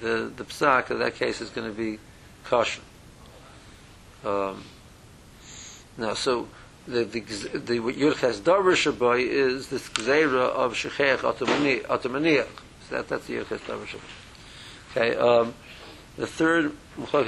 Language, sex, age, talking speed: English, male, 60-79, 130 wpm